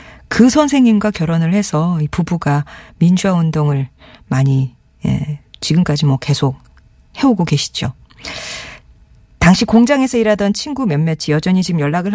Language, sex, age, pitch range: Korean, female, 40-59, 150-200 Hz